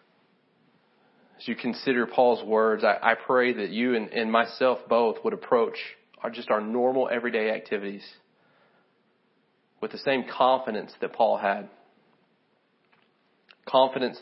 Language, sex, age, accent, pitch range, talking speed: English, male, 30-49, American, 120-135 Hz, 120 wpm